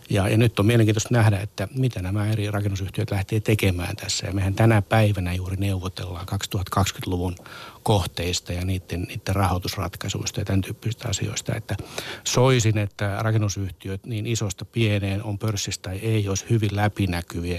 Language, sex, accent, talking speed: Finnish, male, native, 145 wpm